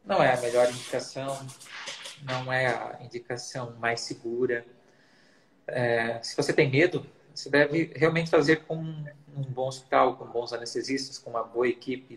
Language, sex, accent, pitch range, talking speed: Portuguese, male, Brazilian, 120-140 Hz, 150 wpm